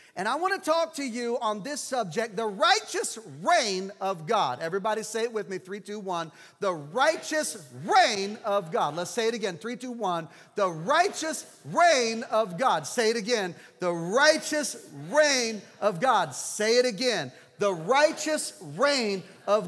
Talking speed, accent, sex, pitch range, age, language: 170 wpm, American, male, 200-280 Hz, 40-59, English